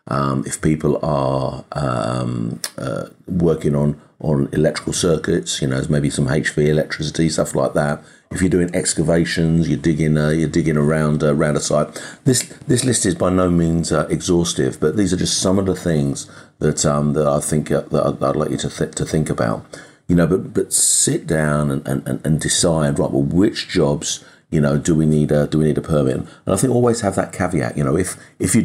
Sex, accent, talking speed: male, British, 220 wpm